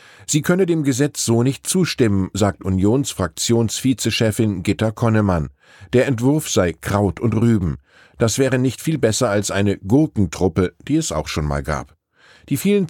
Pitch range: 100-130 Hz